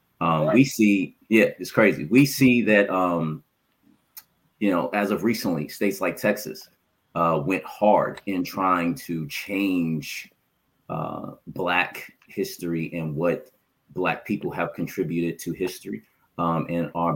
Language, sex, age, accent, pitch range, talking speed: English, male, 30-49, American, 85-95 Hz, 135 wpm